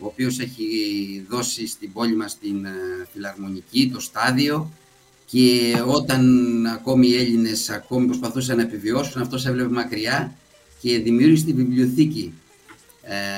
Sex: male